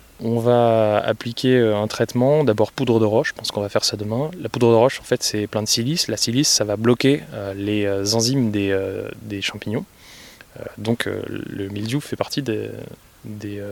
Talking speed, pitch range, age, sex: 205 wpm, 105-125 Hz, 20-39, male